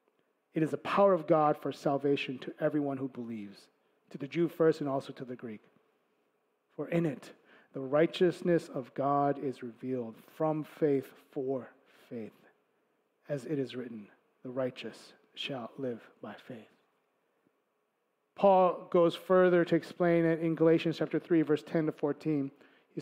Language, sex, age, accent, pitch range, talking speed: English, male, 40-59, American, 140-180 Hz, 155 wpm